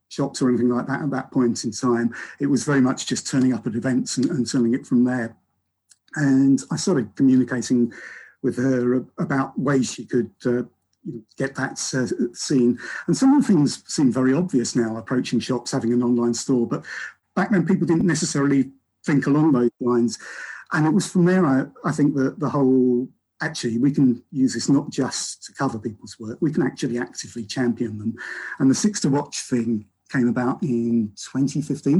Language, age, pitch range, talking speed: English, 50-69, 120-145 Hz, 195 wpm